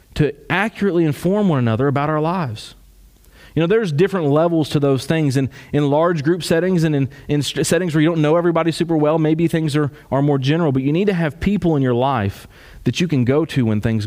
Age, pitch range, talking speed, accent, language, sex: 30-49, 125-165 Hz, 230 wpm, American, English, male